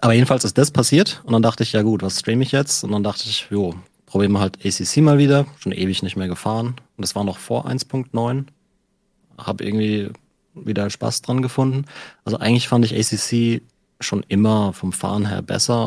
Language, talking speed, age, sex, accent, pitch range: German, 205 wpm, 30-49, male, German, 100-120 Hz